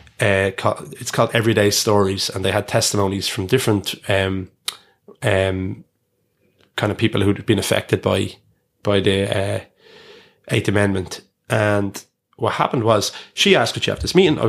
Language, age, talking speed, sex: English, 20-39, 155 wpm, male